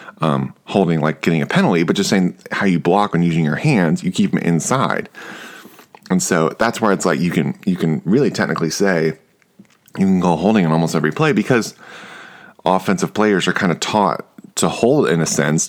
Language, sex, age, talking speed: English, male, 30-49, 205 wpm